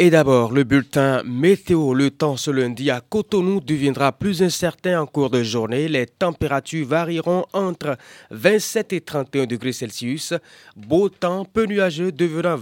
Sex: male